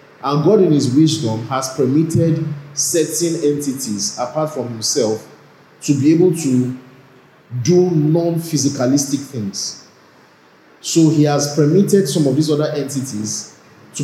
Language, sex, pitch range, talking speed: English, male, 125-155 Hz, 125 wpm